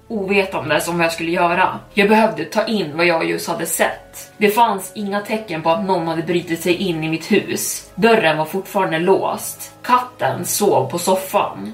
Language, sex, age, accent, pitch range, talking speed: Swedish, female, 20-39, native, 170-195 Hz, 190 wpm